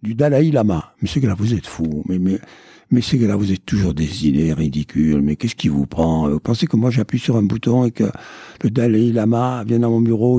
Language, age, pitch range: French, 60-79, 100-140 Hz